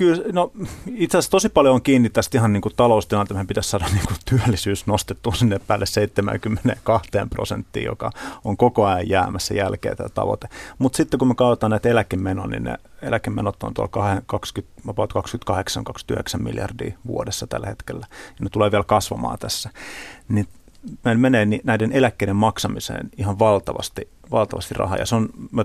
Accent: native